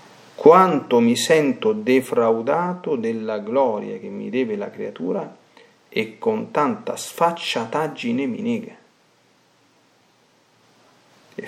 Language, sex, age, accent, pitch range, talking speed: Italian, male, 40-59, native, 170-240 Hz, 95 wpm